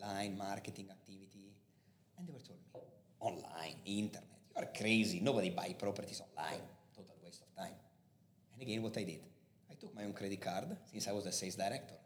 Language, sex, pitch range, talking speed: English, male, 100-140 Hz, 185 wpm